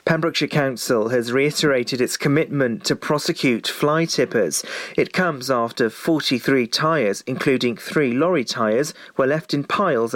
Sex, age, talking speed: male, 40-59, 135 wpm